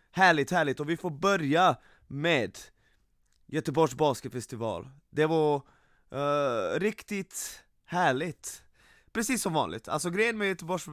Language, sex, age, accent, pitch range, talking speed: Swedish, male, 20-39, native, 125-170 Hz, 115 wpm